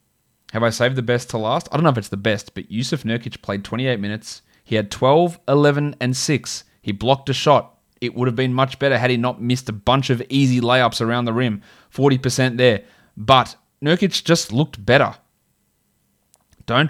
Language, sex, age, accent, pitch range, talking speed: English, male, 20-39, Australian, 115-135 Hz, 200 wpm